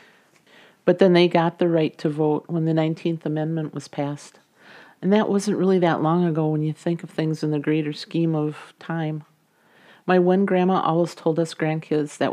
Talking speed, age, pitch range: 195 wpm, 50-69, 155-170 Hz